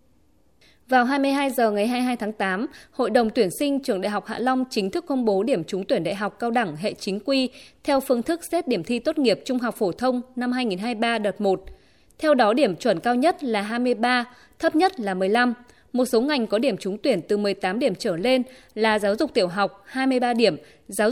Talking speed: 220 wpm